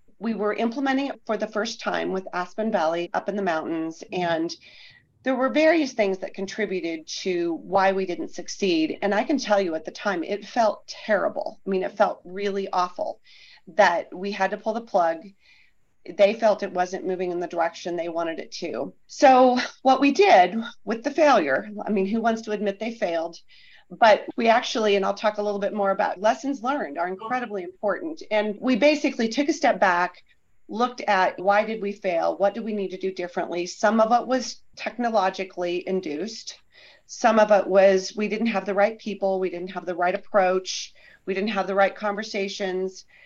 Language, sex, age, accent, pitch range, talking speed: English, female, 40-59, American, 190-235 Hz, 195 wpm